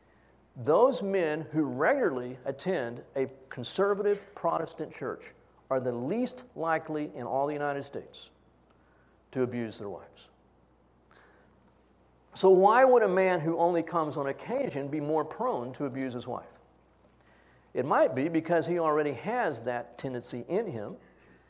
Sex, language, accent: male, English, American